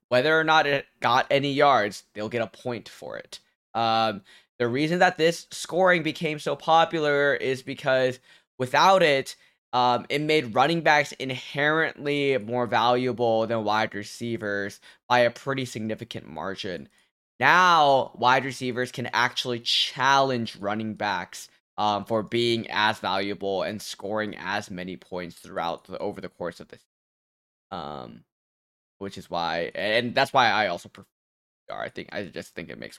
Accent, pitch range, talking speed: American, 110-150 Hz, 155 wpm